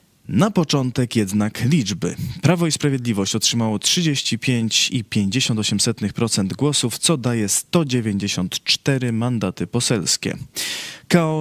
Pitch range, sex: 110-140 Hz, male